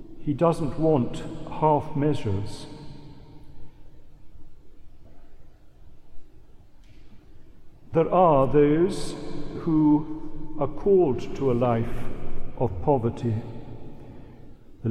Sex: male